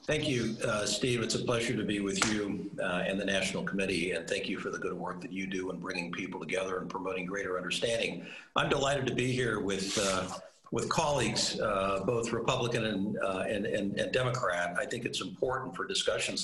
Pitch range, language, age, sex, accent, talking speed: 95-135 Hz, English, 50-69, male, American, 210 wpm